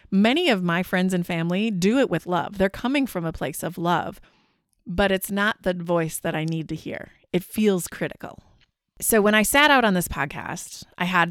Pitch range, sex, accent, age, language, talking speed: 175-230 Hz, female, American, 30-49, English, 210 wpm